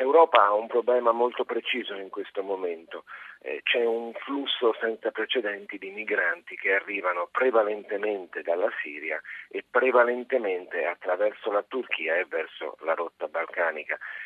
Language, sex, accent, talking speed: Italian, male, native, 135 wpm